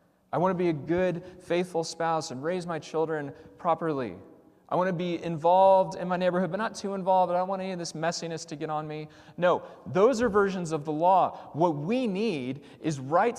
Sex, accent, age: male, American, 30-49